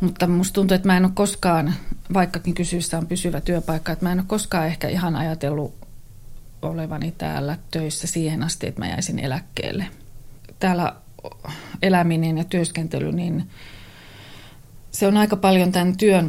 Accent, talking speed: native, 150 wpm